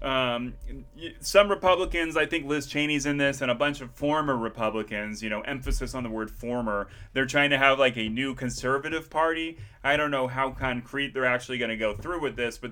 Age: 30-49